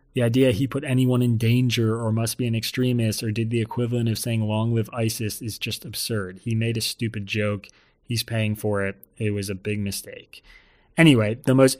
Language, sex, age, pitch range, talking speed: English, male, 30-49, 110-135 Hz, 210 wpm